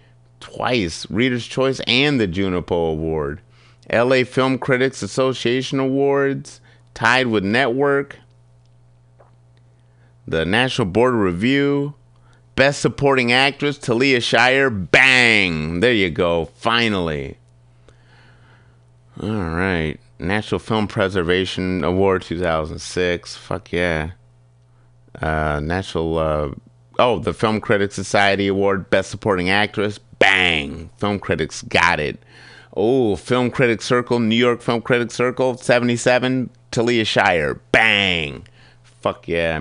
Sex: male